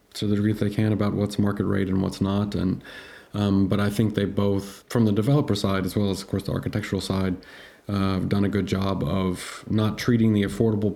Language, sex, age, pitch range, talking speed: Ukrainian, male, 30-49, 95-110 Hz, 235 wpm